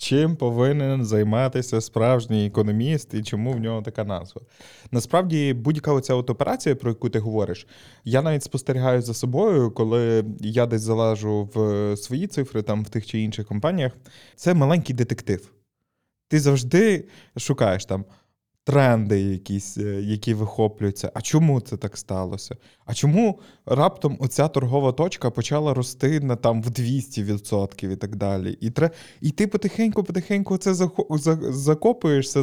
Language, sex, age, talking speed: Ukrainian, male, 20-39, 140 wpm